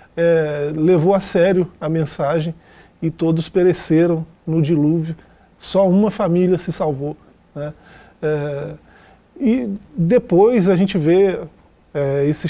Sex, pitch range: male, 155-185 Hz